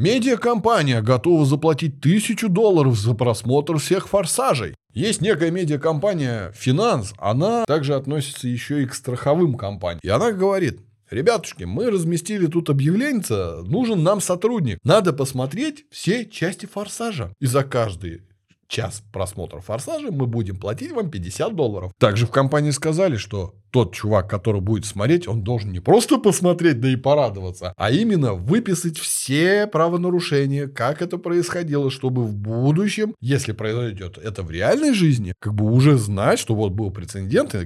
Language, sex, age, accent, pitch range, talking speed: Russian, male, 20-39, native, 110-175 Hz, 155 wpm